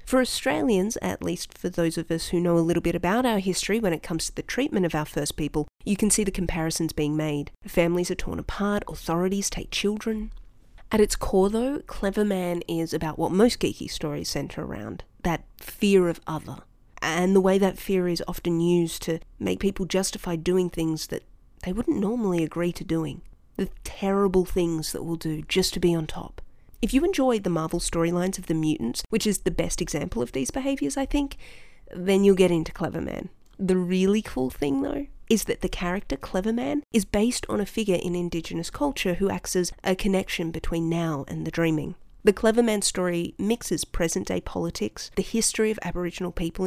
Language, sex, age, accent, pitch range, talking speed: English, female, 30-49, Australian, 170-215 Hz, 200 wpm